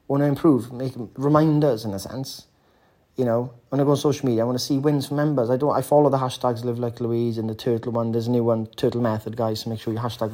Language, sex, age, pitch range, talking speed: English, male, 30-49, 115-135 Hz, 265 wpm